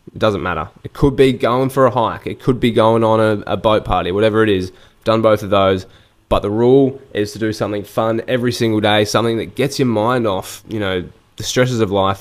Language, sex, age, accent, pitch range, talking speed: English, male, 10-29, Australian, 100-120 Hz, 240 wpm